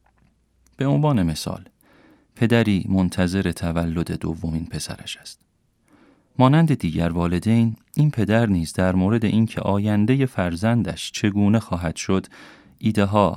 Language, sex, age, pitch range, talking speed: Persian, male, 40-59, 85-115 Hz, 110 wpm